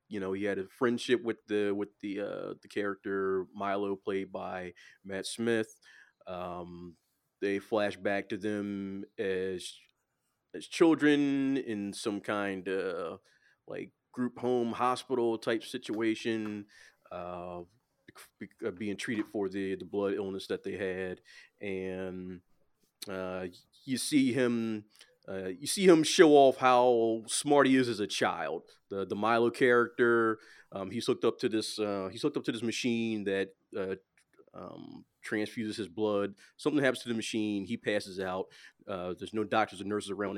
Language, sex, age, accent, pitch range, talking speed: English, male, 30-49, American, 95-115 Hz, 155 wpm